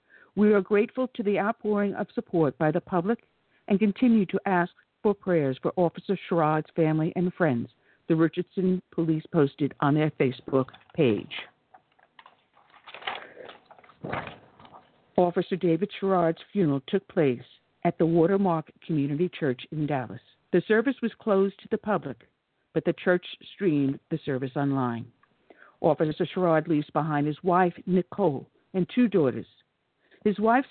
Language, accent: English, American